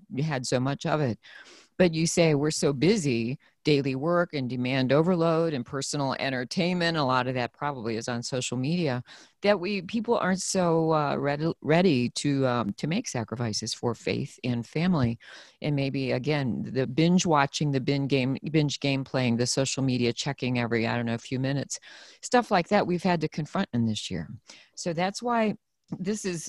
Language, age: English, 40-59